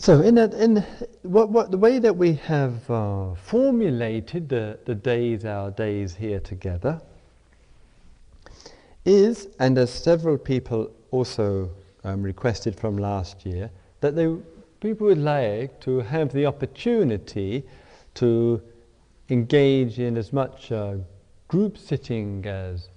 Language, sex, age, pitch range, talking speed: English, male, 50-69, 100-135 Hz, 130 wpm